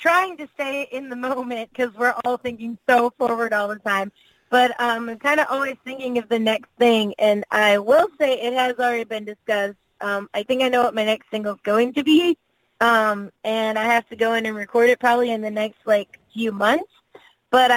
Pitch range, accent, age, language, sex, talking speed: 225-270 Hz, American, 20-39, English, female, 225 wpm